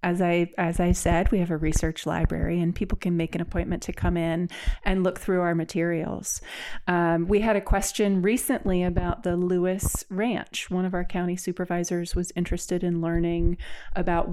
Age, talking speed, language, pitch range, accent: 30-49, 185 wpm, English, 170-195 Hz, American